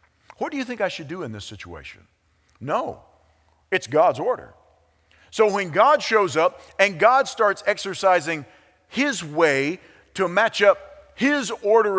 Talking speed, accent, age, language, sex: 150 wpm, American, 50-69, English, male